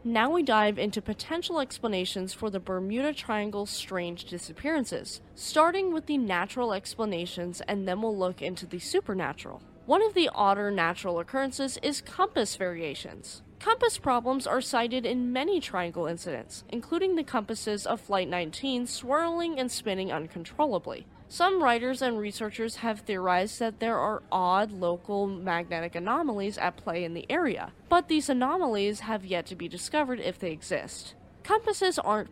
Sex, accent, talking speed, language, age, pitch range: female, American, 150 wpm, English, 10-29, 180-265 Hz